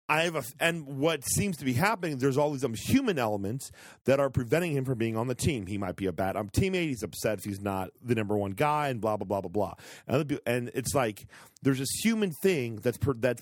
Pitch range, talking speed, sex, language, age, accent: 115-145 Hz, 260 wpm, male, English, 40-59, American